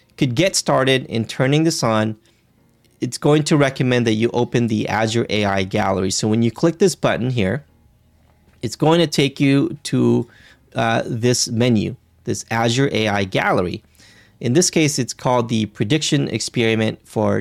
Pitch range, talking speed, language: 110-140 Hz, 160 wpm, English